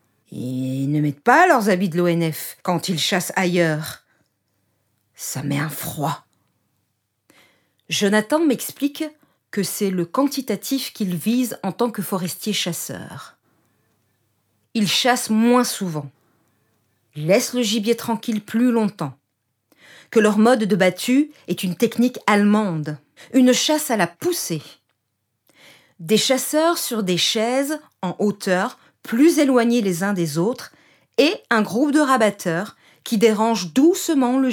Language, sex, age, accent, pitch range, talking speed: French, female, 50-69, French, 160-240 Hz, 130 wpm